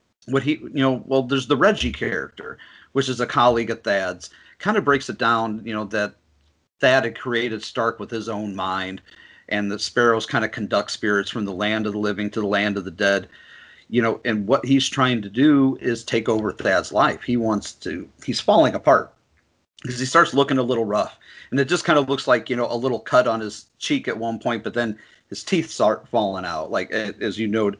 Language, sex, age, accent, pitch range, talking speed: English, male, 40-59, American, 110-130 Hz, 225 wpm